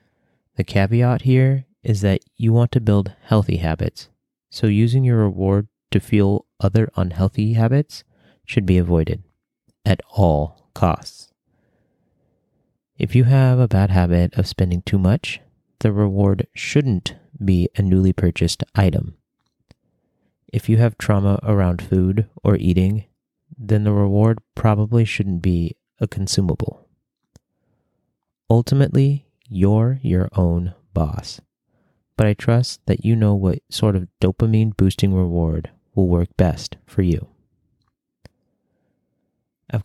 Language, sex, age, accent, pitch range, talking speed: English, male, 30-49, American, 95-115 Hz, 125 wpm